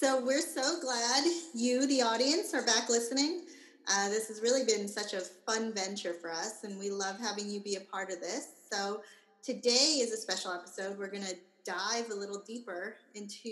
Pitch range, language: 190-235 Hz, English